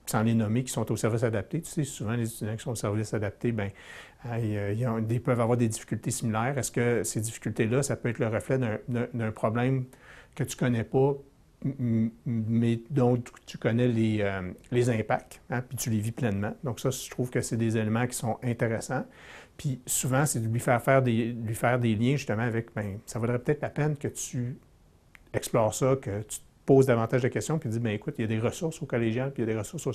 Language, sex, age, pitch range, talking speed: French, male, 60-79, 110-130 Hz, 240 wpm